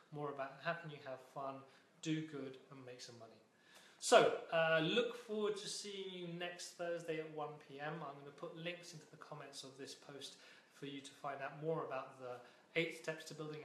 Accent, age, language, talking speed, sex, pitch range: British, 30-49, English, 205 wpm, male, 150-195 Hz